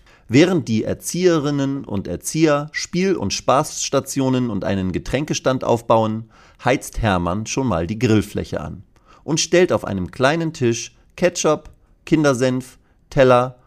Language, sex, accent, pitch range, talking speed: German, male, German, 95-135 Hz, 125 wpm